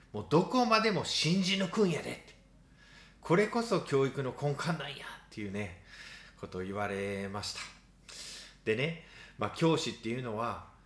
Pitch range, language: 105-160 Hz, Japanese